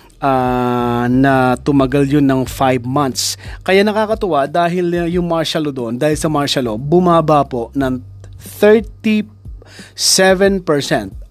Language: Filipino